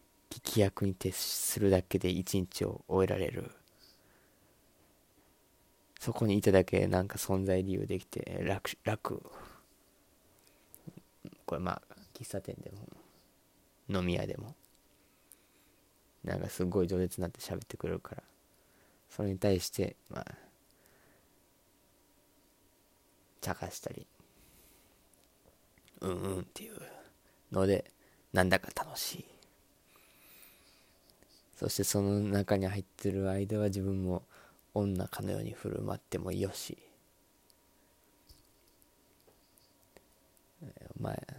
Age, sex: 20-39, male